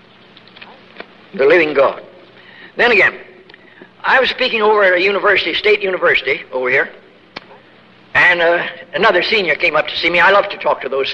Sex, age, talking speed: male, 60-79, 165 wpm